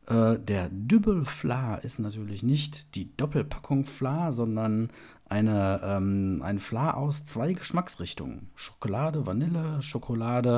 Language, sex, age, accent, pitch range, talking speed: German, male, 50-69, German, 105-140 Hz, 110 wpm